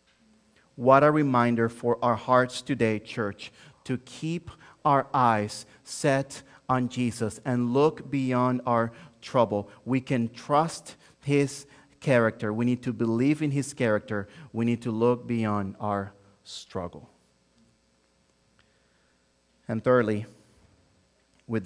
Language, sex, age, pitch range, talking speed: English, male, 30-49, 110-155 Hz, 115 wpm